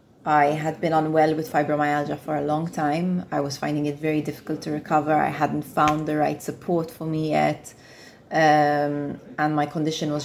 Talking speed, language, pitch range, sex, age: 185 wpm, English, 150-180 Hz, female, 20-39